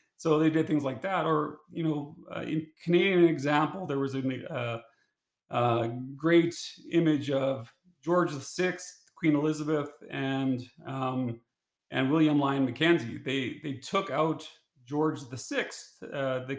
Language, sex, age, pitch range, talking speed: English, male, 40-59, 135-160 Hz, 140 wpm